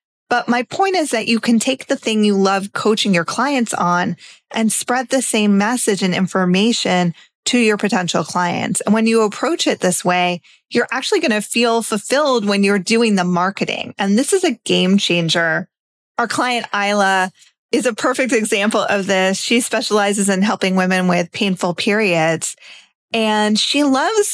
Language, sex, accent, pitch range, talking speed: English, female, American, 190-240 Hz, 175 wpm